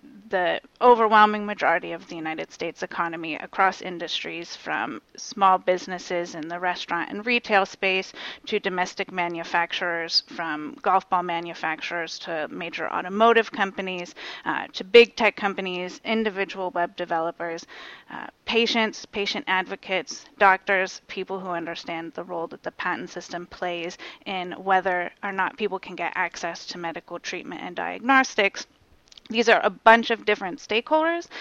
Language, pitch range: English, 175-210 Hz